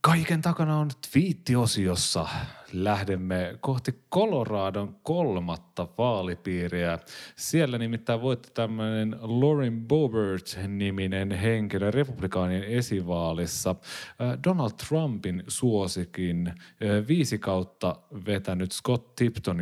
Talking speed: 80 wpm